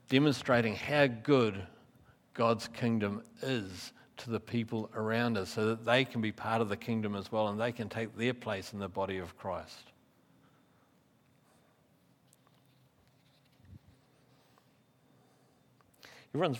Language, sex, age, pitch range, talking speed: English, male, 50-69, 110-135 Hz, 125 wpm